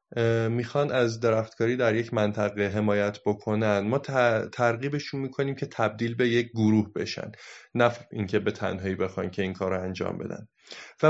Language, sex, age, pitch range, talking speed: Persian, male, 30-49, 105-130 Hz, 150 wpm